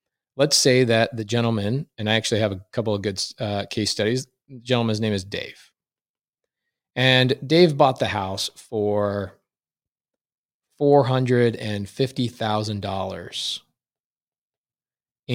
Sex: male